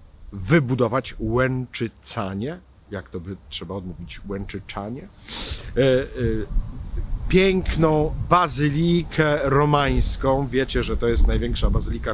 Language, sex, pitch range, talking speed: Polish, male, 100-155 Hz, 85 wpm